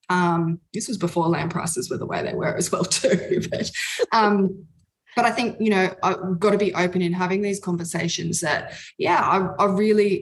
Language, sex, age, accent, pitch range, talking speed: English, female, 20-39, Australian, 170-195 Hz, 205 wpm